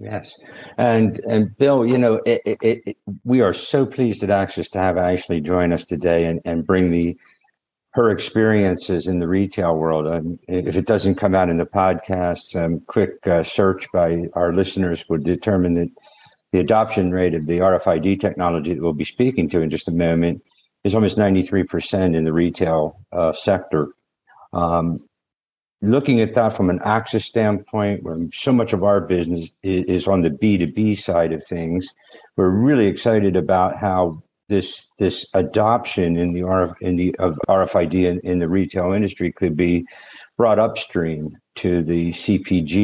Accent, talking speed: American, 175 wpm